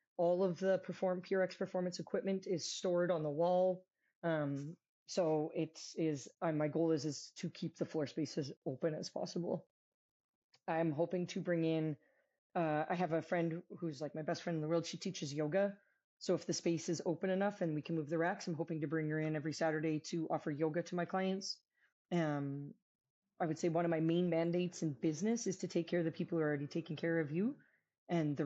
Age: 20-39